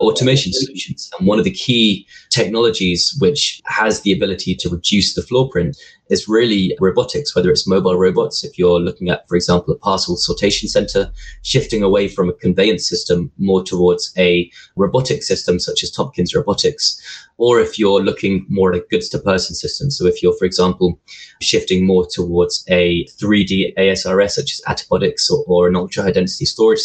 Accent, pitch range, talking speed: British, 90-140 Hz, 175 wpm